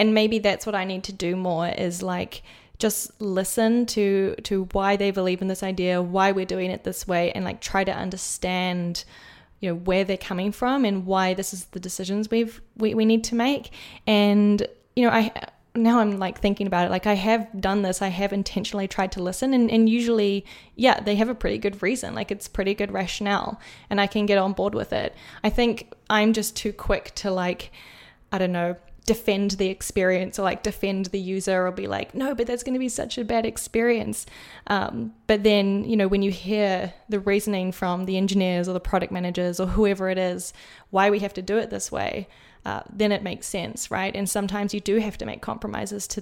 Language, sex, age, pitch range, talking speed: English, female, 10-29, 190-220 Hz, 220 wpm